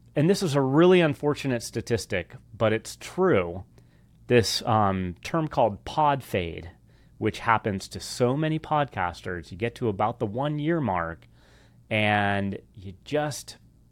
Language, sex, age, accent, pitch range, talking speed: English, male, 30-49, American, 95-120 Hz, 140 wpm